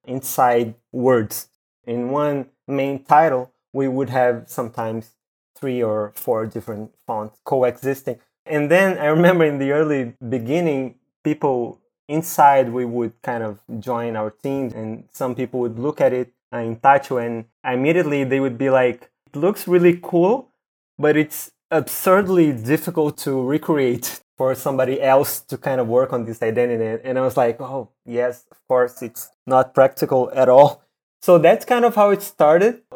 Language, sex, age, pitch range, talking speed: English, male, 20-39, 120-150 Hz, 160 wpm